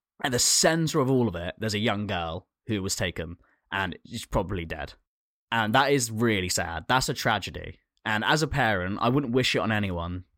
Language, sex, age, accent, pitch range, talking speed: English, male, 10-29, British, 95-125 Hz, 210 wpm